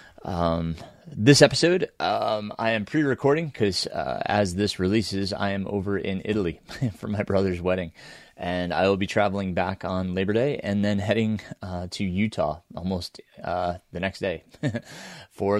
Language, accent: English, American